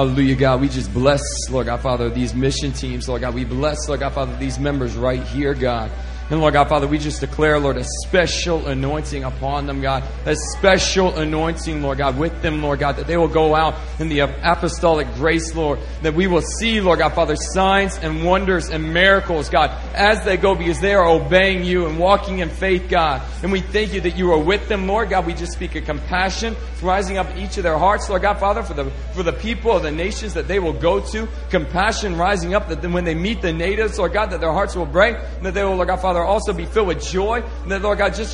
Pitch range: 155-205 Hz